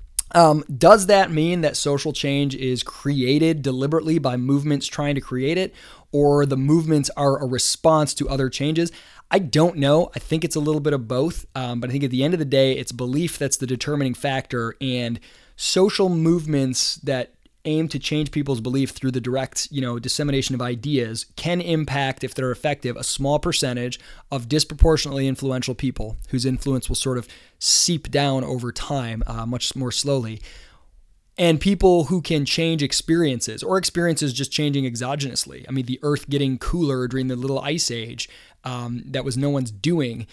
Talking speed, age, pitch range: 180 wpm, 20-39, 125-150 Hz